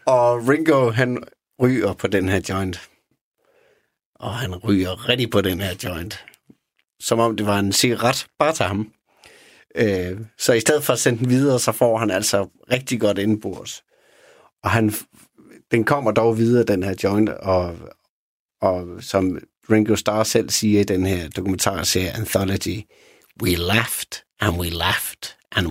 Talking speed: 160 wpm